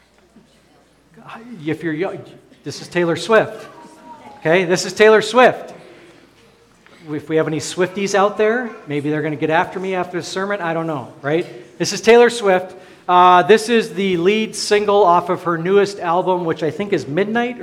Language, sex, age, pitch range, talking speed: English, male, 40-59, 155-195 Hz, 180 wpm